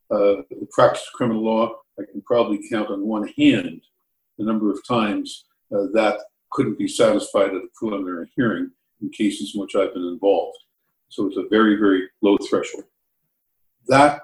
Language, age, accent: English, 50-69, American